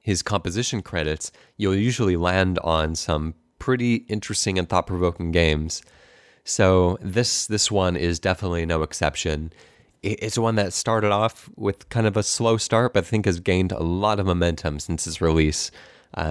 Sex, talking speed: male, 165 wpm